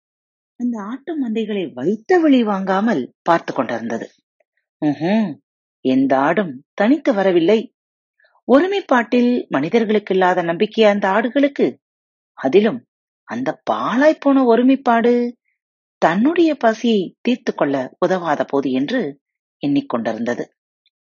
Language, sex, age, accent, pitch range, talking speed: Tamil, female, 30-49, native, 180-260 Hz, 55 wpm